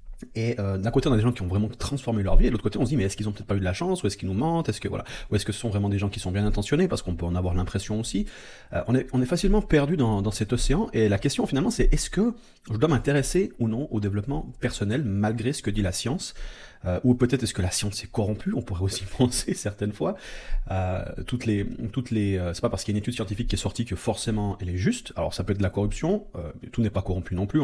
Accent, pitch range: French, 100-125 Hz